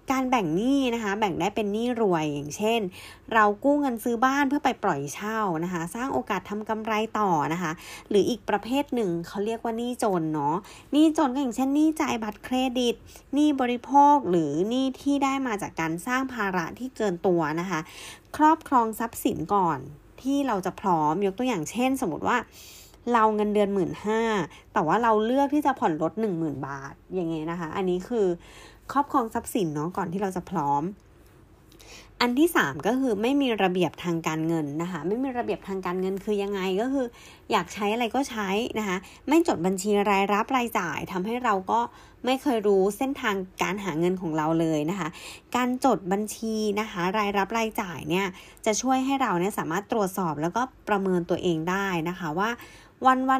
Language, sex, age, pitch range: Thai, female, 20-39, 180-250 Hz